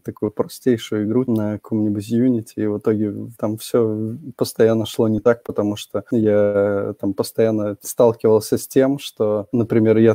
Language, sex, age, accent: Russian, male, 20-39, native